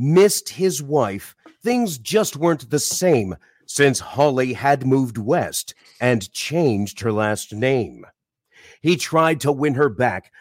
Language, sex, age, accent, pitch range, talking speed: English, male, 40-59, American, 125-180 Hz, 140 wpm